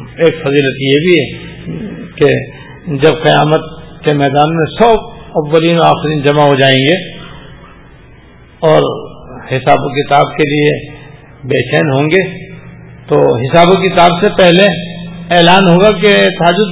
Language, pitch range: Urdu, 135-180 Hz